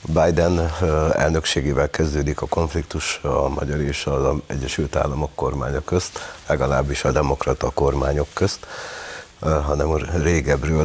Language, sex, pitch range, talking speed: Hungarian, male, 75-90 Hz, 110 wpm